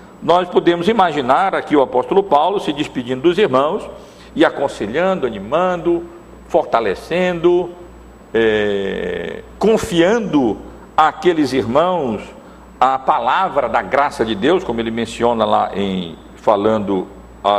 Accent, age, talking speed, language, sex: Brazilian, 60-79, 105 wpm, Portuguese, male